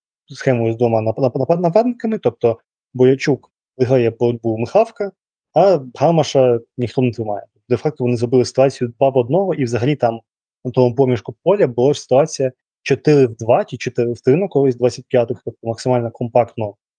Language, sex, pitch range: Ukrainian, male, 115-135 Hz